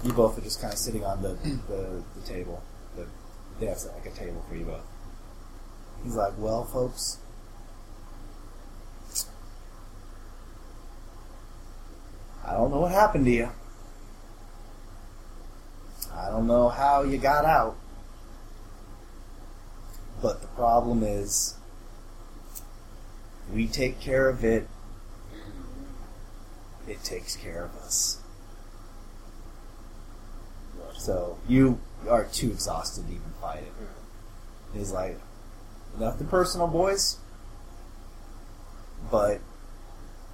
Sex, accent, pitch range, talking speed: male, American, 100-115 Hz, 100 wpm